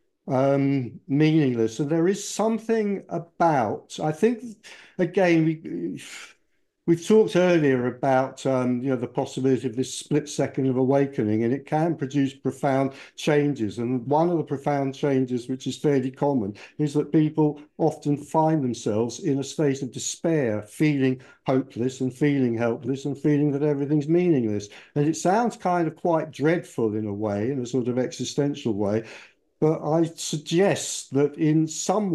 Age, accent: 60-79, British